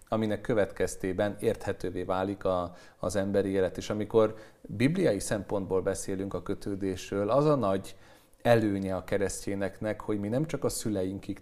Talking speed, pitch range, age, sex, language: 140 wpm, 95-120 Hz, 40-59, male, Hungarian